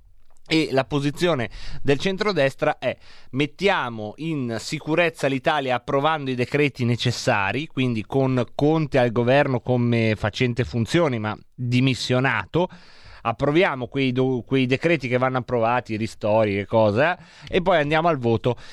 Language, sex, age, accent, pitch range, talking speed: Italian, male, 30-49, native, 125-165 Hz, 125 wpm